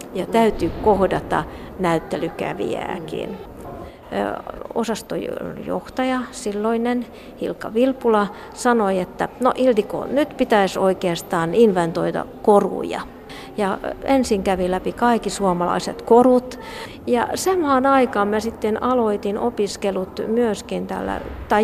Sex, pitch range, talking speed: female, 200-260 Hz, 95 wpm